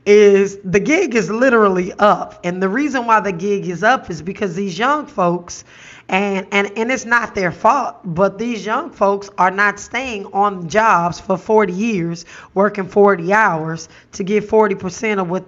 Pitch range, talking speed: 185-220 Hz, 180 wpm